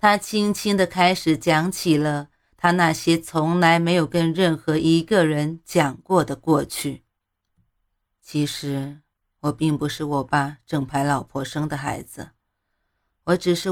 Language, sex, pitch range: Chinese, female, 140-165 Hz